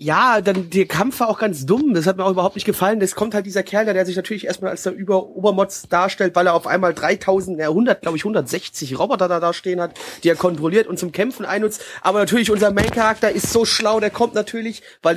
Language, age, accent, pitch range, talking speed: German, 30-49, German, 175-210 Hz, 255 wpm